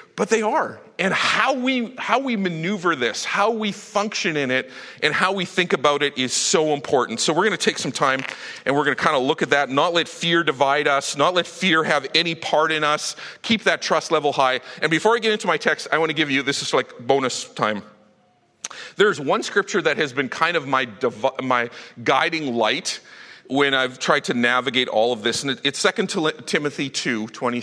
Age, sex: 40-59, male